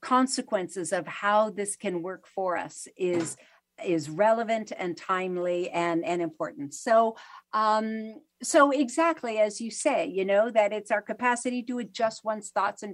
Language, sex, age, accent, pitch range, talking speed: English, female, 50-69, American, 170-225 Hz, 160 wpm